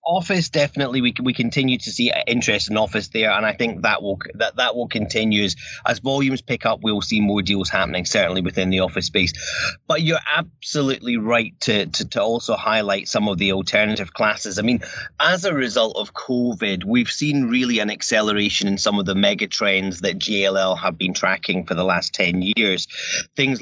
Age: 30-49